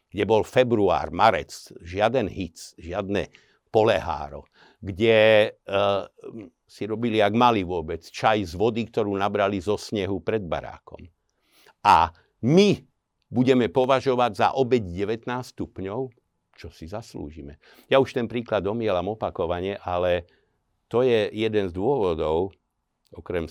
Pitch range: 90-125 Hz